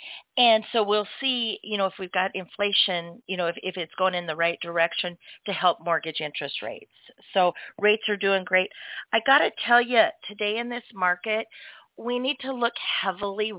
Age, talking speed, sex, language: 40-59, 195 wpm, female, English